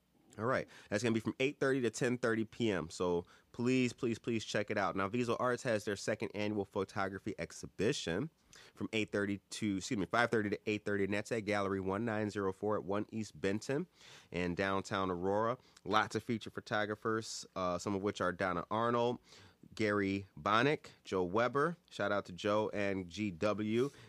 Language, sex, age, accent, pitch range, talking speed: English, male, 30-49, American, 100-120 Hz, 165 wpm